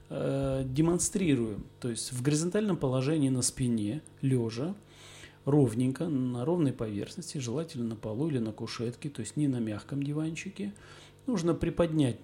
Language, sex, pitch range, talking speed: Russian, male, 120-155 Hz, 130 wpm